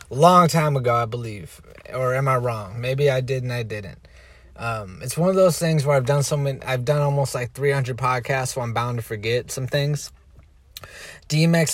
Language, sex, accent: English, male, American